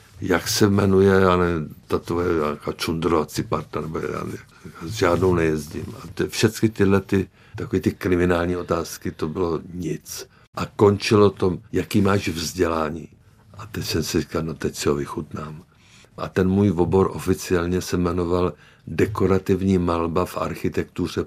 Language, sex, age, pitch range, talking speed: Czech, male, 60-79, 85-100 Hz, 140 wpm